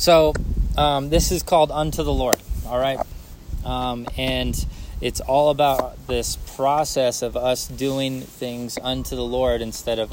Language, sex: English, male